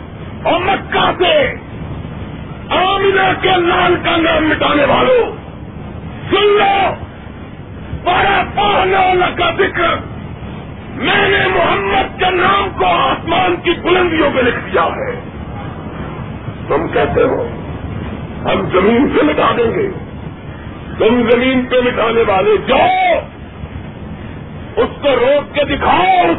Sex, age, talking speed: male, 50-69, 105 wpm